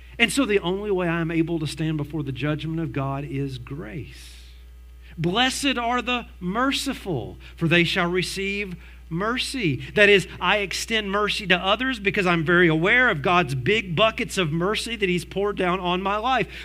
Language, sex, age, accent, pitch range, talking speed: English, male, 40-59, American, 110-180 Hz, 180 wpm